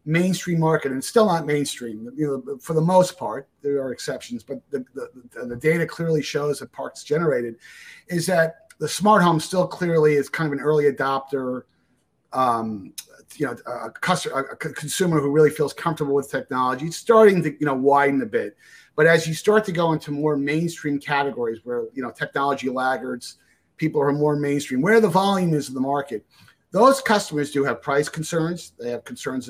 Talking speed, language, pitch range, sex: 190 wpm, English, 130-160 Hz, male